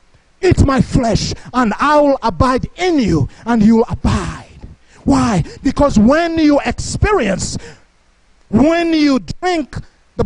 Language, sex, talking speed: English, male, 125 wpm